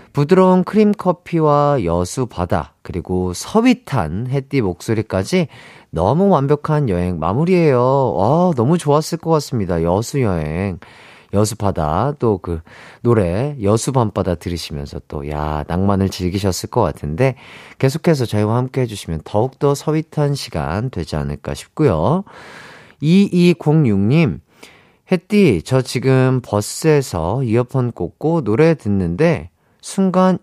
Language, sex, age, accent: Korean, male, 40-59, native